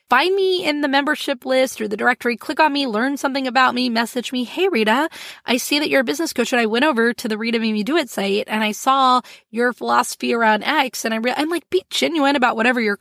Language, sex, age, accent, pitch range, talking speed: English, female, 20-39, American, 215-280 Hz, 245 wpm